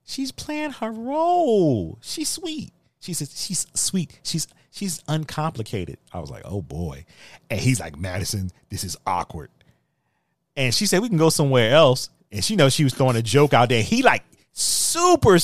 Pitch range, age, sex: 105-155 Hz, 30-49, male